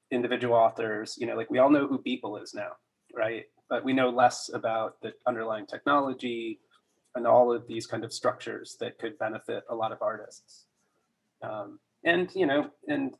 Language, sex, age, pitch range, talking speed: English, male, 20-39, 115-135 Hz, 180 wpm